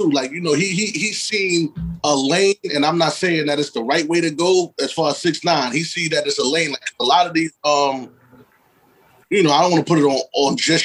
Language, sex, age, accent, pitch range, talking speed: English, male, 30-49, American, 145-170 Hz, 260 wpm